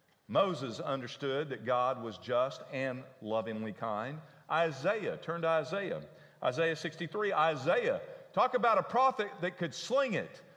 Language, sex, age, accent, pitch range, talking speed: English, male, 50-69, American, 145-205 Hz, 135 wpm